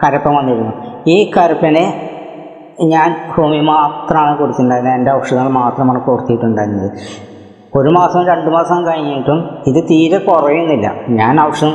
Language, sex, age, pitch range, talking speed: Malayalam, female, 20-39, 135-165 Hz, 110 wpm